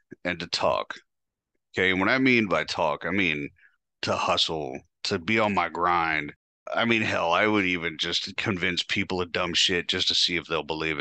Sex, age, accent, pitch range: male, 30-49, American, 90-115 Hz